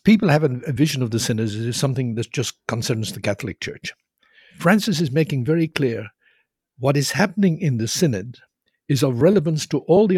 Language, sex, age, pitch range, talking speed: English, male, 60-79, 120-160 Hz, 190 wpm